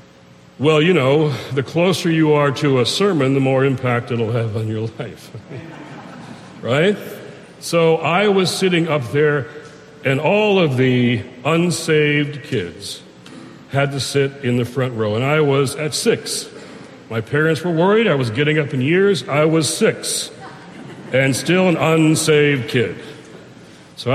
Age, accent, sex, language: 60-79, American, male, English